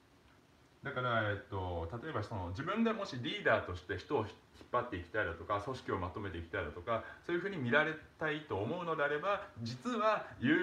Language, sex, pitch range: Japanese, male, 95-140 Hz